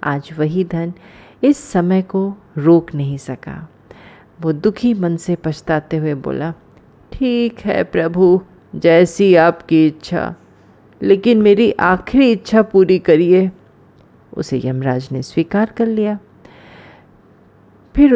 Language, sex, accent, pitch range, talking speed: Hindi, female, native, 155-215 Hz, 115 wpm